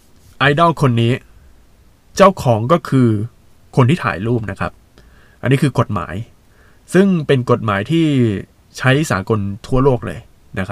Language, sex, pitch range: Thai, male, 95-135 Hz